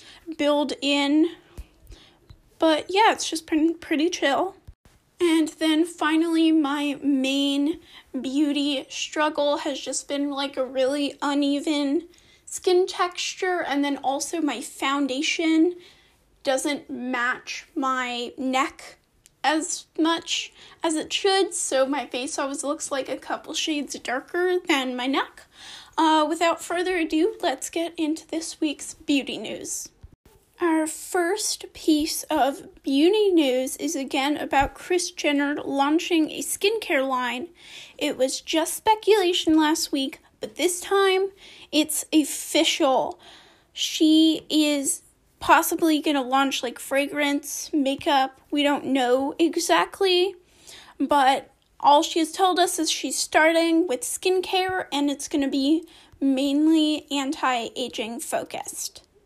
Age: 10-29